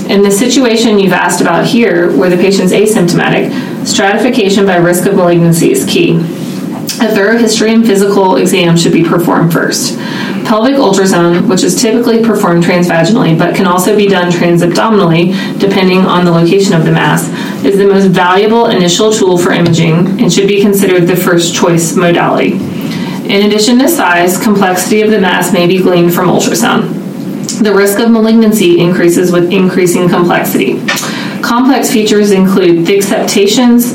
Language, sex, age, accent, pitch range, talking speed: English, female, 30-49, American, 180-215 Hz, 155 wpm